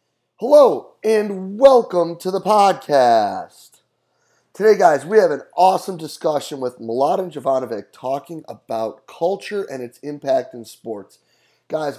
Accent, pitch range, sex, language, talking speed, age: American, 125-170 Hz, male, English, 125 wpm, 30-49